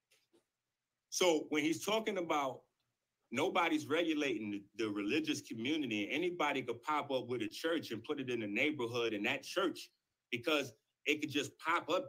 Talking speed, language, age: 165 wpm, English, 30-49